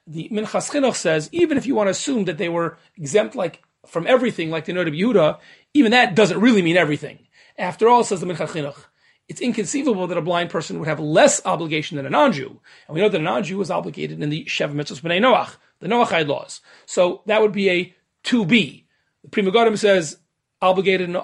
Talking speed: 210 wpm